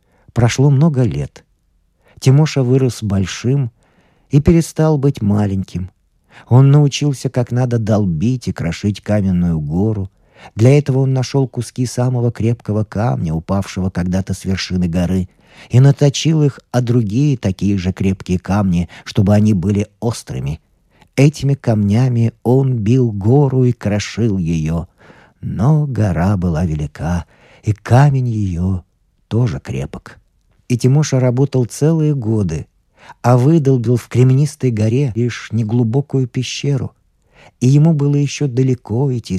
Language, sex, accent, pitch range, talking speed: Russian, male, native, 95-130 Hz, 125 wpm